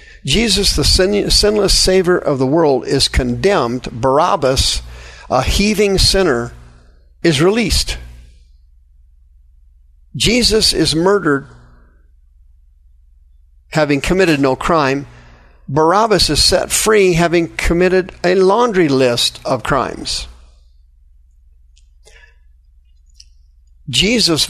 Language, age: English, 50-69